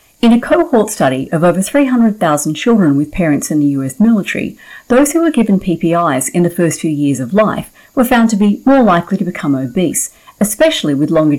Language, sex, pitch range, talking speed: English, female, 150-225 Hz, 200 wpm